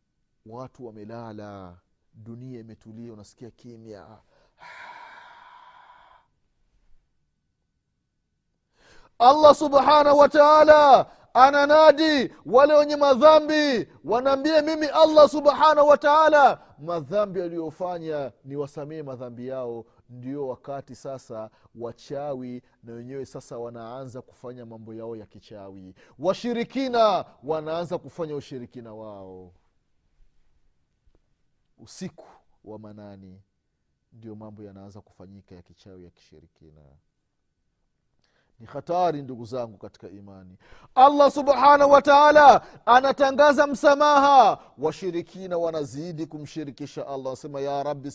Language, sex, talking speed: Swahili, male, 95 wpm